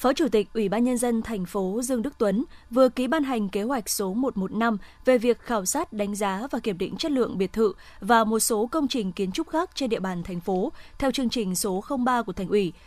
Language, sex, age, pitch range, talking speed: Vietnamese, female, 20-39, 210-260 Hz, 250 wpm